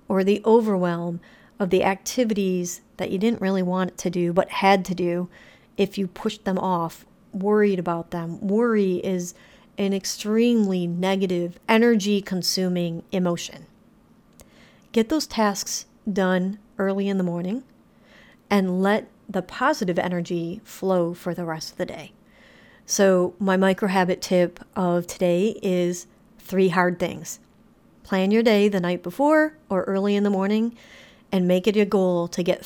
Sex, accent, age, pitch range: female, American, 50-69, 180-205 Hz